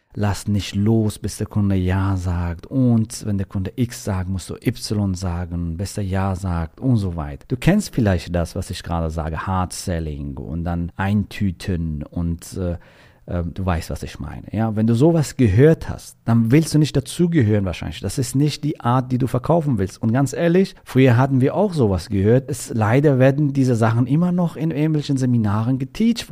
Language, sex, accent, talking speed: German, male, German, 195 wpm